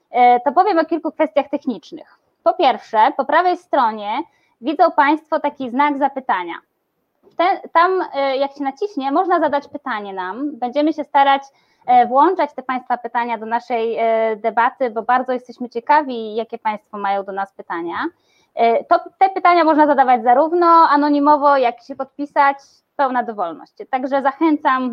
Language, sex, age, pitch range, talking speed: Polish, female, 20-39, 240-310 Hz, 145 wpm